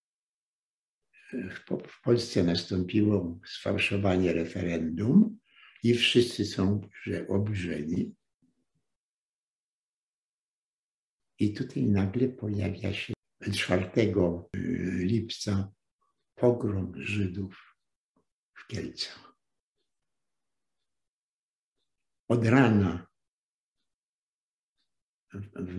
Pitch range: 100-130 Hz